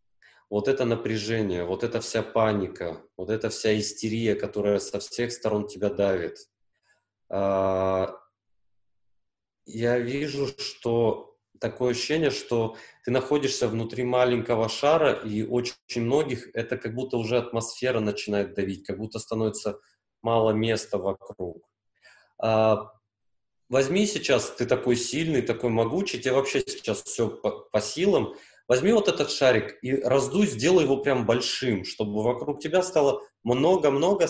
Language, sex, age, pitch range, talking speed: Russian, male, 20-39, 105-130 Hz, 130 wpm